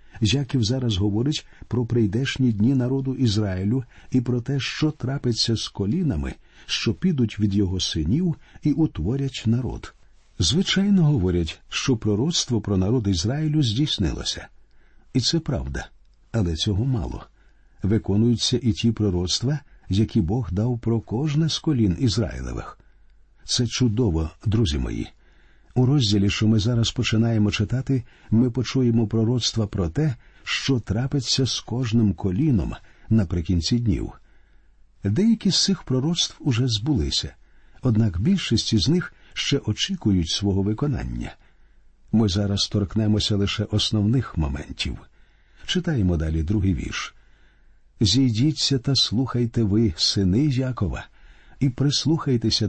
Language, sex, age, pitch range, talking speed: Ukrainian, male, 50-69, 100-130 Hz, 120 wpm